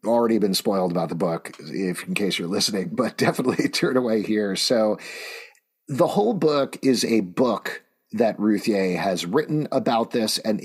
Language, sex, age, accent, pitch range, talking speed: English, male, 40-59, American, 95-125 Hz, 175 wpm